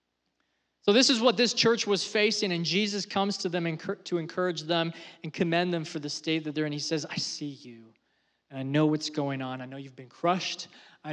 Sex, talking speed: male, 225 wpm